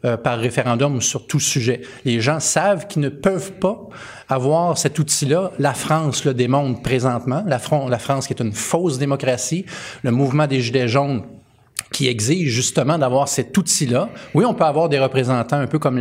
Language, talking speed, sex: French, 185 wpm, male